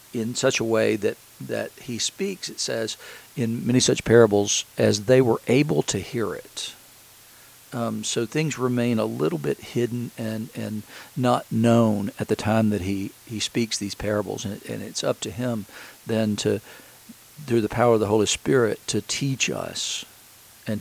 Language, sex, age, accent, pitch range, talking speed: English, male, 50-69, American, 110-120 Hz, 180 wpm